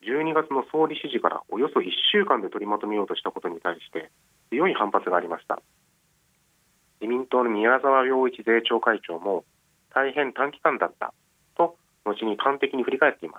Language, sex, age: Japanese, male, 40-59